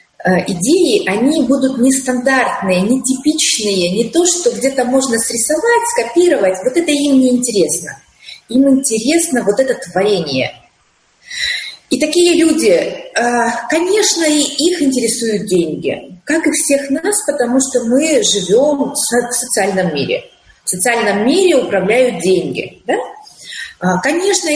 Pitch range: 215-315 Hz